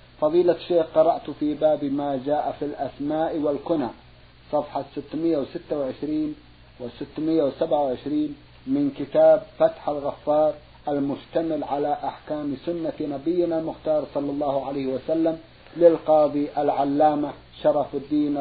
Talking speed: 105 wpm